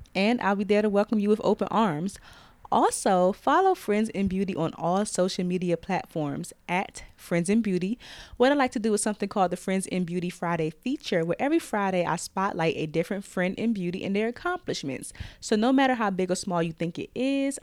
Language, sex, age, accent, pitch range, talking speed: English, female, 20-39, American, 180-230 Hz, 210 wpm